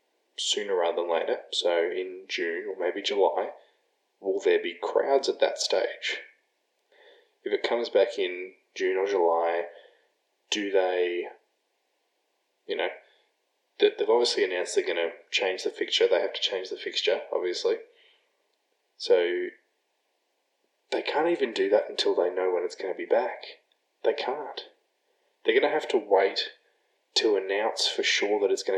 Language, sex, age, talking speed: English, male, 20-39, 155 wpm